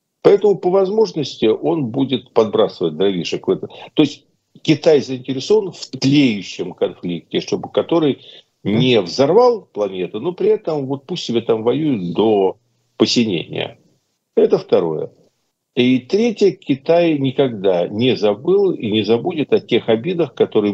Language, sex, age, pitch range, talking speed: Russian, male, 50-69, 125-200 Hz, 130 wpm